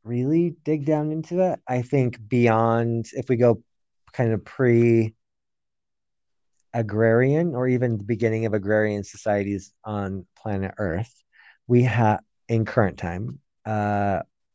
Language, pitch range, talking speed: English, 100-125 Hz, 130 wpm